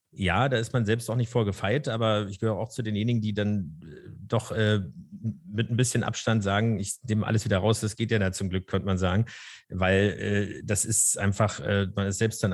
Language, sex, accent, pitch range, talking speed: German, male, German, 100-120 Hz, 230 wpm